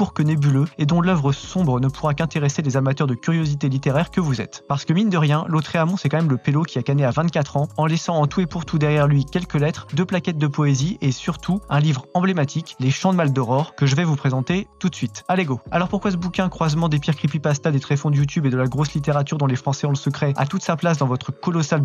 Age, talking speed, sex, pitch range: 20-39, 270 wpm, male, 140-170 Hz